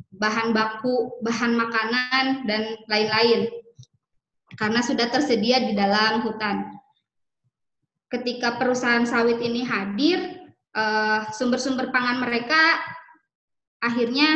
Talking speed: 90 wpm